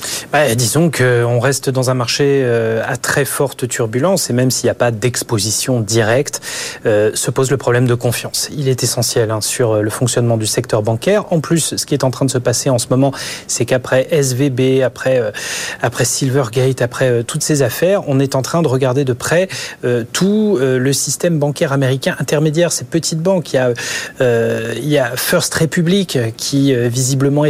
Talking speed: 175 wpm